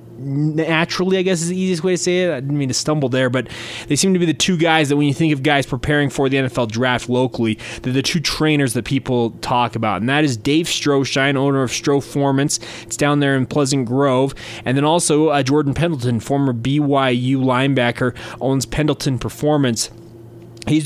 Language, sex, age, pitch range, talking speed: English, male, 20-39, 120-150 Hz, 205 wpm